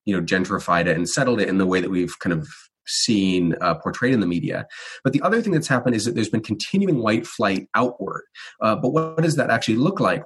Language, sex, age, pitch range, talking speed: English, male, 30-49, 95-130 Hz, 250 wpm